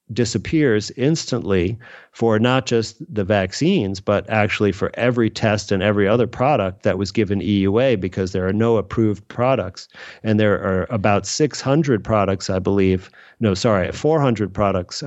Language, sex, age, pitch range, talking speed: English, male, 40-59, 100-115 Hz, 150 wpm